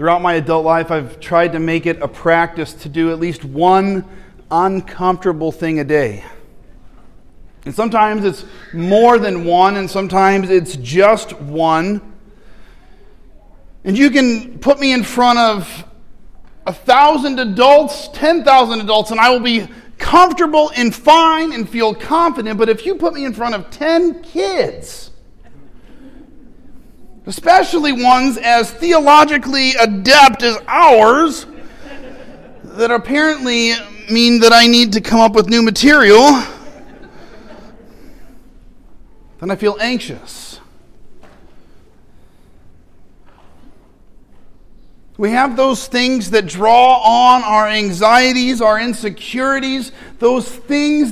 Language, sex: English, male